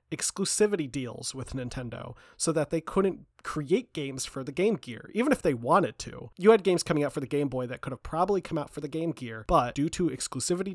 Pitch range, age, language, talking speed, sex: 125-160 Hz, 30-49, English, 235 wpm, male